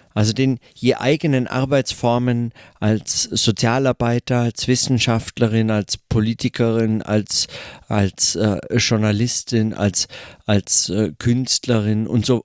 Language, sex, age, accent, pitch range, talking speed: German, male, 50-69, German, 110-125 Hz, 100 wpm